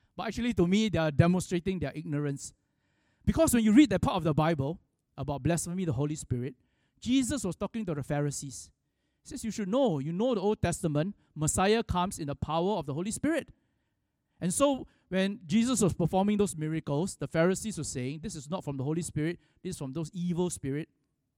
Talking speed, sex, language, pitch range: 205 wpm, male, English, 140-195 Hz